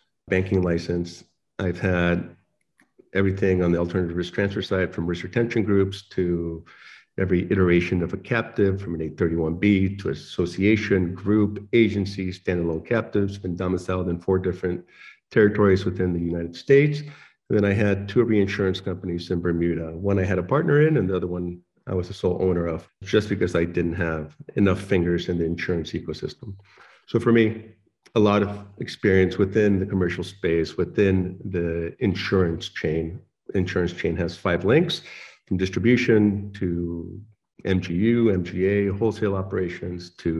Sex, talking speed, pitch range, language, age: male, 155 wpm, 85-100 Hz, English, 50-69